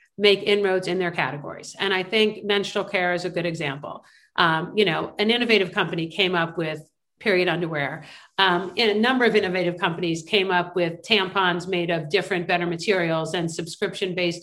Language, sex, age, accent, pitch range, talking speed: English, female, 50-69, American, 180-210 Hz, 180 wpm